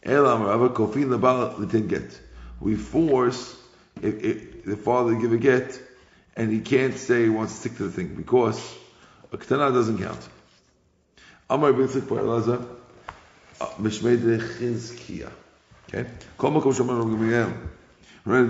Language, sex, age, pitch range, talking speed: English, male, 50-69, 110-130 Hz, 95 wpm